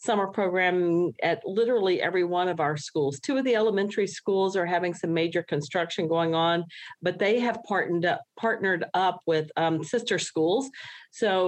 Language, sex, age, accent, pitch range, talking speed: English, female, 40-59, American, 165-195 Hz, 175 wpm